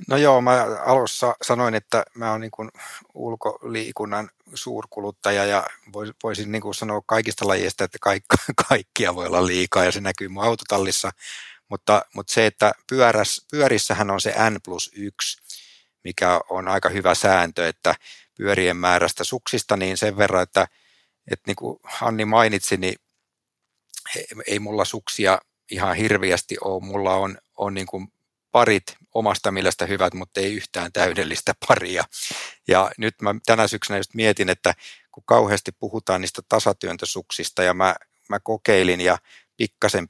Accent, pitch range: native, 95-110 Hz